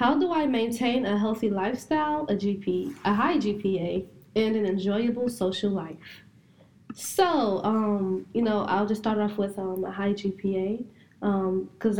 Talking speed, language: 155 wpm, English